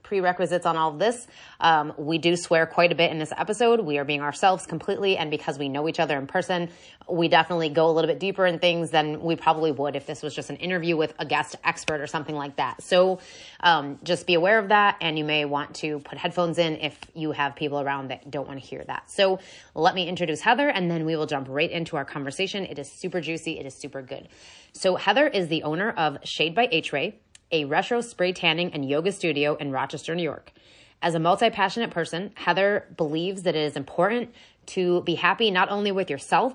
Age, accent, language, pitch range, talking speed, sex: 30-49, American, English, 150-190 Hz, 230 wpm, female